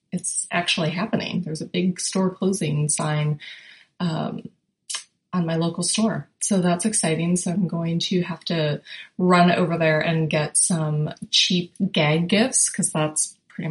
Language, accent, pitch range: English, American, 165-195 Hz